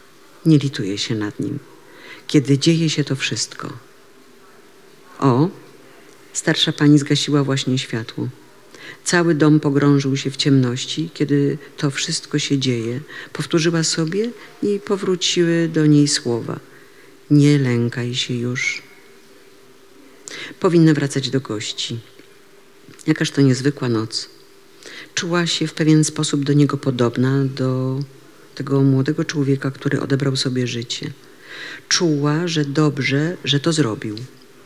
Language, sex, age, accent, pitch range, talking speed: Polish, female, 50-69, native, 130-160 Hz, 120 wpm